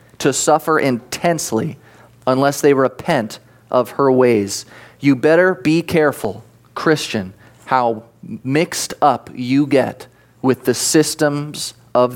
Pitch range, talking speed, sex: 125-170 Hz, 115 wpm, male